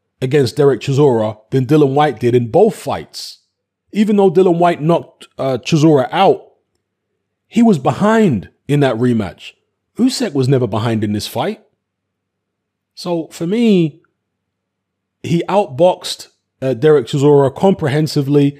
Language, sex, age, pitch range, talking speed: English, male, 30-49, 115-160 Hz, 130 wpm